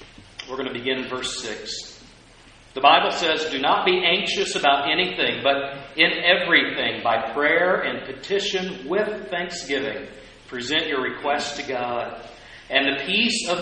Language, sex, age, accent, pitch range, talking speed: English, male, 40-59, American, 130-180 Hz, 150 wpm